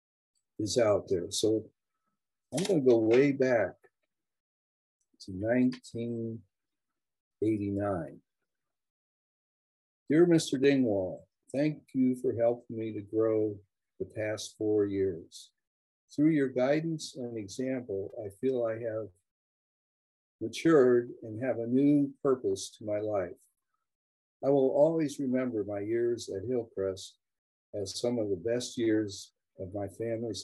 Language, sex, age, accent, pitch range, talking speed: English, male, 50-69, American, 100-130 Hz, 120 wpm